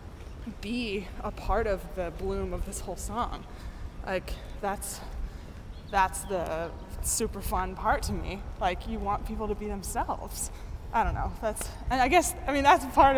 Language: English